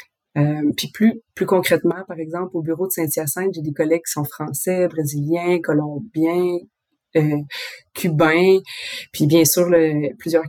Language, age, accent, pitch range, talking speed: English, 30-49, Canadian, 160-190 Hz, 150 wpm